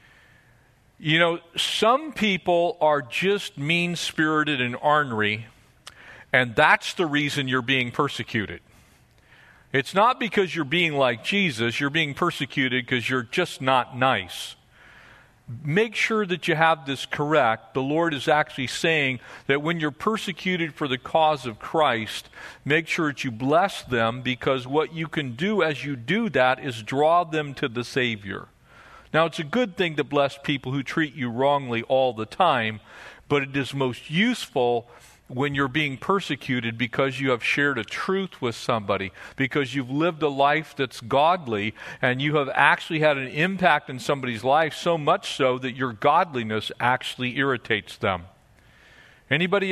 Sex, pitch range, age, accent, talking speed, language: male, 125-160 Hz, 50-69, American, 160 wpm, English